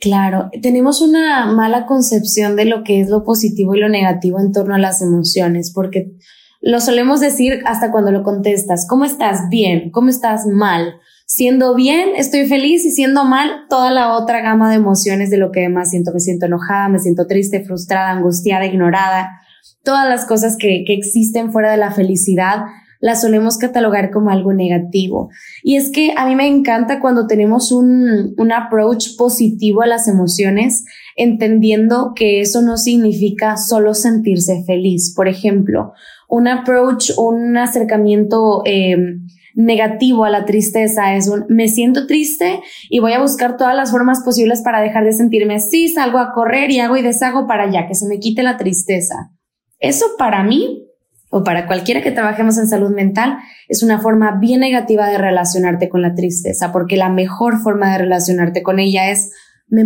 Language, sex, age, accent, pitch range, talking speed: Spanish, female, 10-29, Mexican, 195-240 Hz, 175 wpm